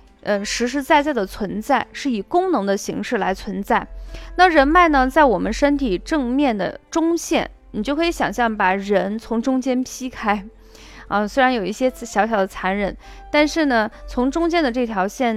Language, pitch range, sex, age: Chinese, 205-300 Hz, female, 20-39